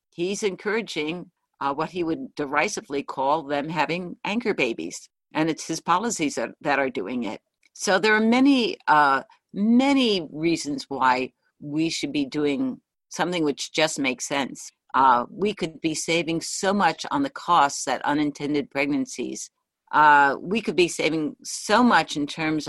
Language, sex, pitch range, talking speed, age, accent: English, female, 145-190 Hz, 160 wpm, 50-69, American